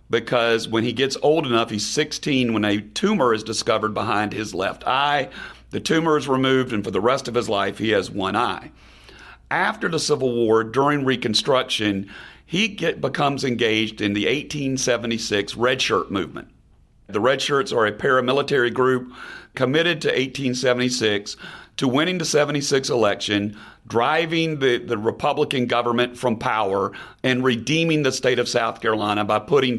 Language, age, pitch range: English, 40-59, 110-140 Hz